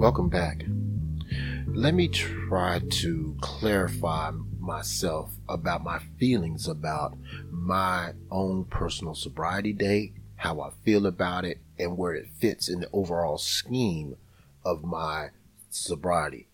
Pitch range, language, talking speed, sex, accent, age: 80-105 Hz, English, 120 wpm, male, American, 30-49